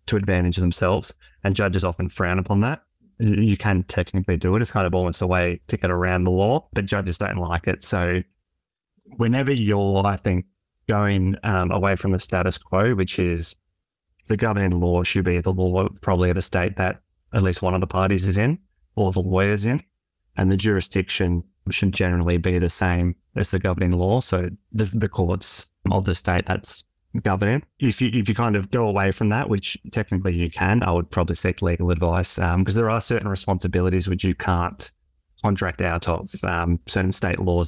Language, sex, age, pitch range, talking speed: English, male, 20-39, 90-100 Hz, 195 wpm